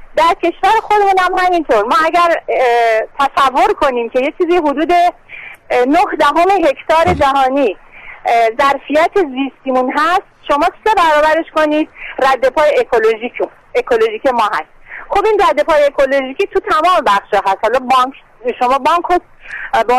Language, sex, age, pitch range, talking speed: Persian, female, 40-59, 255-345 Hz, 125 wpm